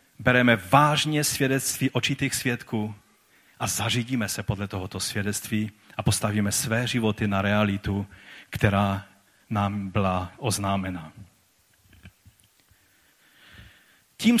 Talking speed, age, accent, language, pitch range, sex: 90 wpm, 40-59, native, Czech, 115-170 Hz, male